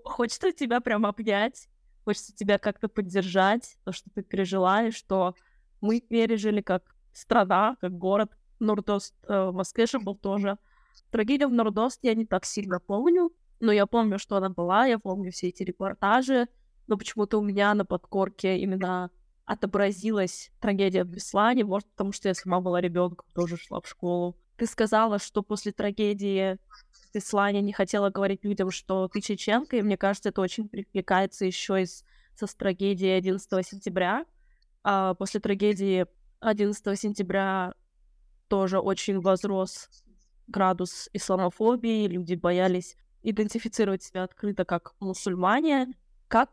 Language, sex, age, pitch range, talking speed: Russian, female, 20-39, 185-220 Hz, 140 wpm